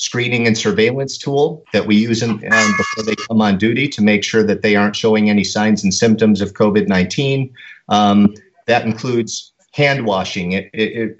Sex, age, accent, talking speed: male, 50-69, American, 165 wpm